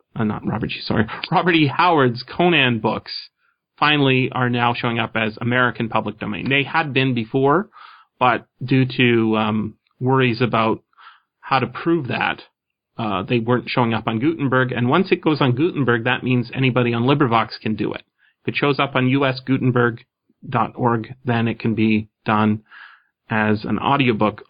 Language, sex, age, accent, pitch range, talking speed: English, male, 30-49, American, 110-130 Hz, 165 wpm